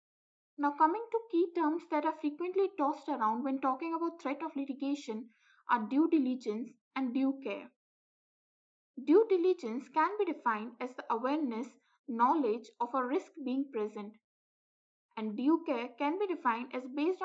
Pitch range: 250-330 Hz